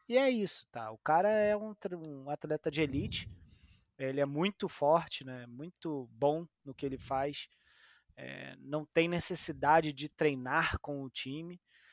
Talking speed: 160 wpm